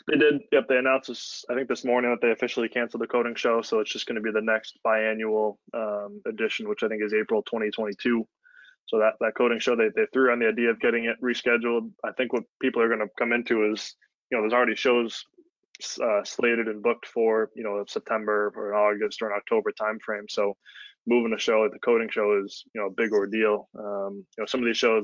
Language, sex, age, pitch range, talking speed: English, male, 20-39, 105-120 Hz, 235 wpm